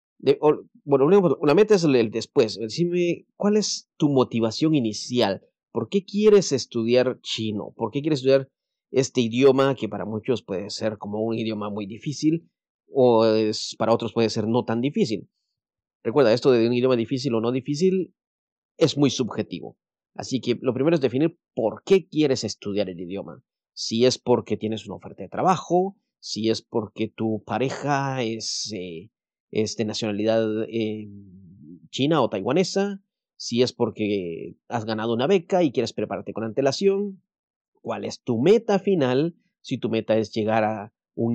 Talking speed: 160 wpm